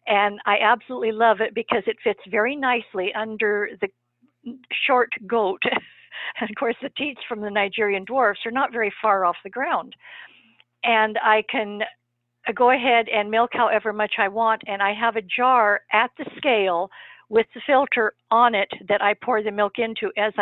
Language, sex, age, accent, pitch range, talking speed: English, female, 50-69, American, 200-240 Hz, 180 wpm